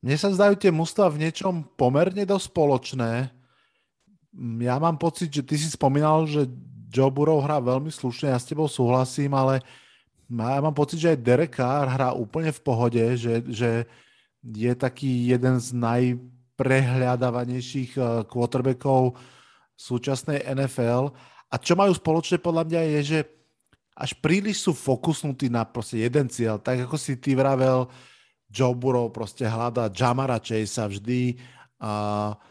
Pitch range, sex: 125-150 Hz, male